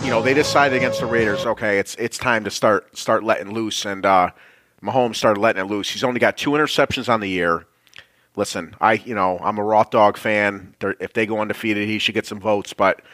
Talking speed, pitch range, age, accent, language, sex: 230 wpm, 100-120 Hz, 30-49, American, English, male